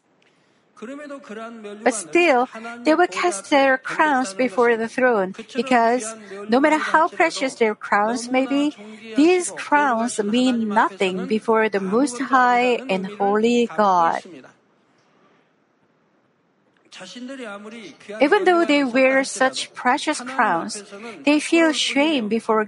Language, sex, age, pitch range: Korean, female, 50-69, 220-275 Hz